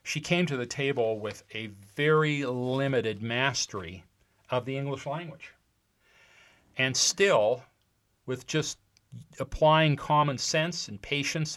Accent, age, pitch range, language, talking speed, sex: American, 40-59, 115-145 Hz, English, 120 wpm, male